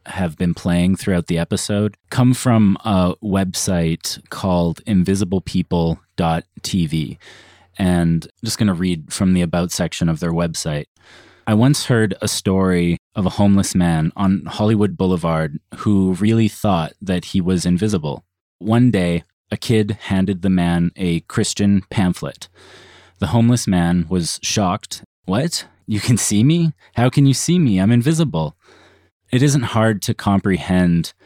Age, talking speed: 30-49, 145 wpm